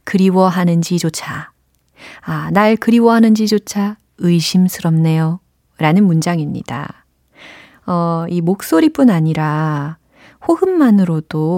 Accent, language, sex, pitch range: native, Korean, female, 165-230 Hz